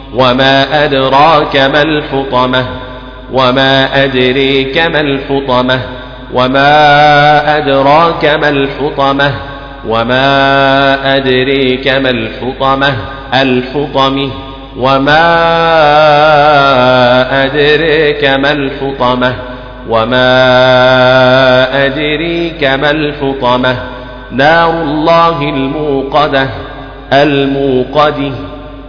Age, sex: 40-59, male